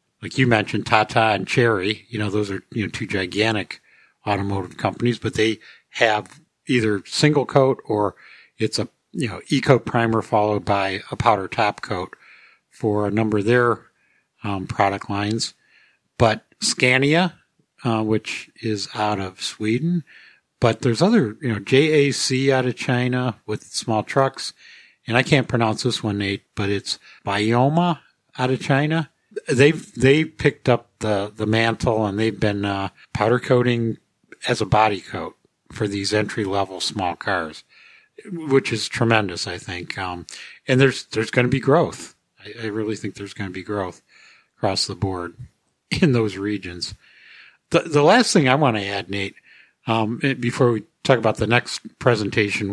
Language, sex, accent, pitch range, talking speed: English, male, American, 105-130 Hz, 165 wpm